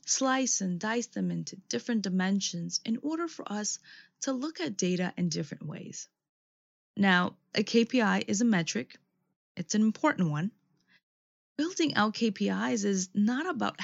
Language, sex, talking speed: English, female, 150 wpm